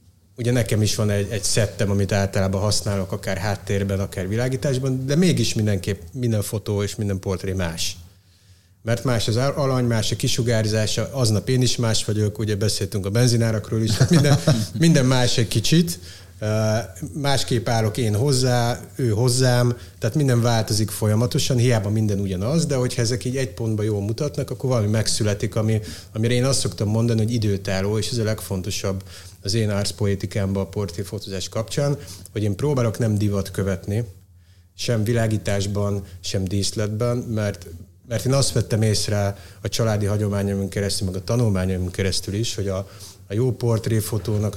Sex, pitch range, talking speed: male, 100-120 Hz, 160 wpm